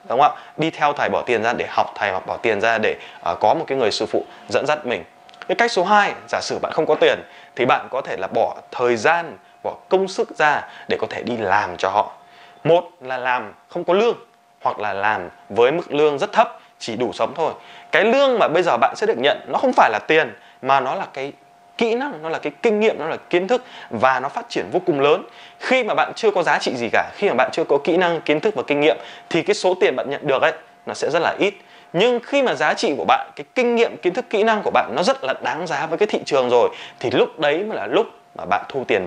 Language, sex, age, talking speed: Vietnamese, male, 20-39, 275 wpm